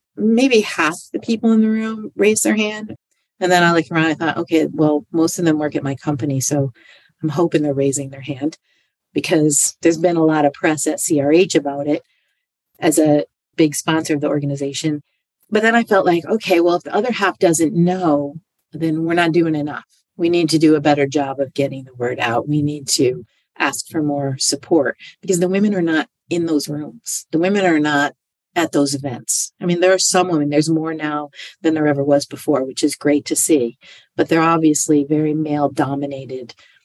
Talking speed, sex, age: 210 wpm, female, 50-69